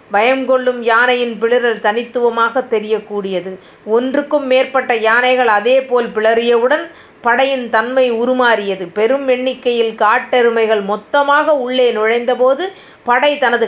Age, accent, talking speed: 30-49, native, 100 wpm